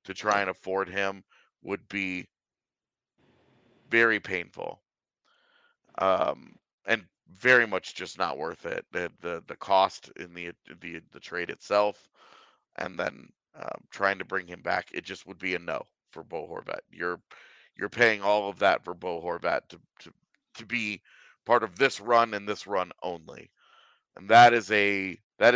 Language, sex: English, male